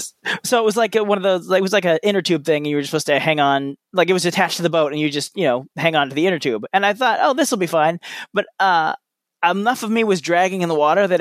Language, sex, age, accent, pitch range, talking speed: English, male, 20-39, American, 180-235 Hz, 315 wpm